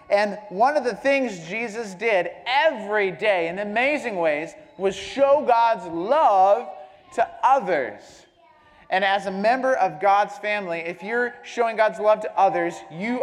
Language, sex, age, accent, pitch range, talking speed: English, male, 30-49, American, 185-250 Hz, 150 wpm